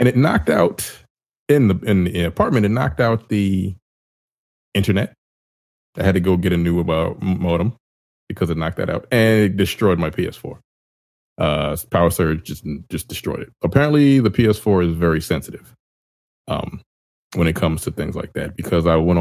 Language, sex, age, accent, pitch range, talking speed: English, male, 20-39, American, 80-100 Hz, 180 wpm